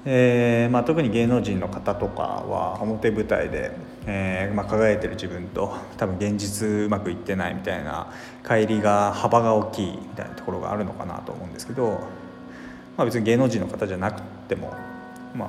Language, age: Japanese, 20-39